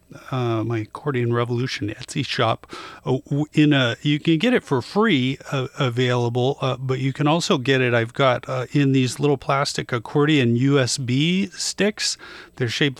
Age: 40-59